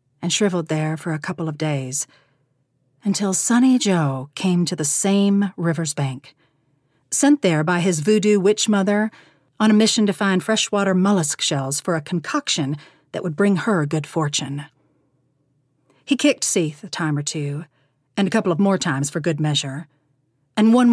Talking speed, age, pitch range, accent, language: 170 wpm, 40-59, 145-200 Hz, American, English